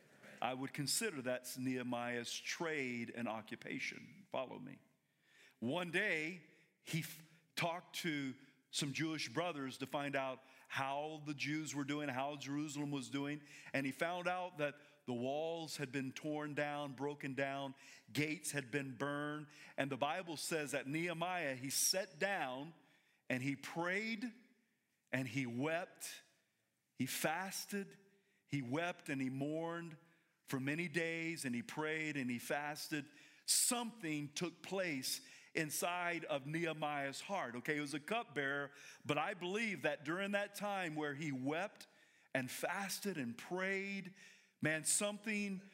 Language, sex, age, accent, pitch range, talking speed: English, male, 40-59, American, 140-180 Hz, 140 wpm